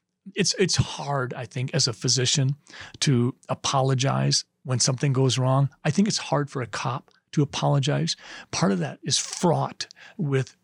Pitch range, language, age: 135-165 Hz, English, 40-59